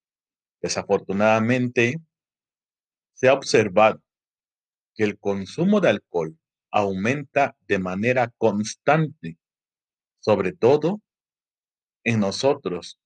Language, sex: Spanish, male